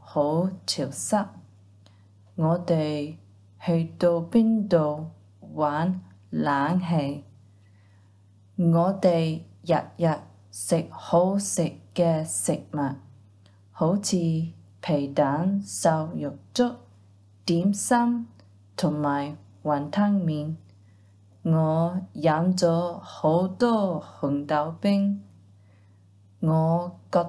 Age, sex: 20-39, female